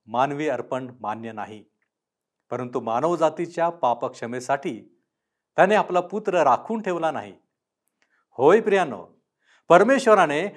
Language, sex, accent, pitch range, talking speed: Marathi, male, native, 140-225 Hz, 90 wpm